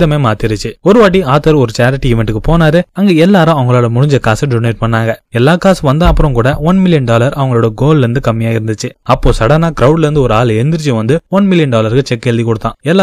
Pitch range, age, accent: 120-155 Hz, 20-39, native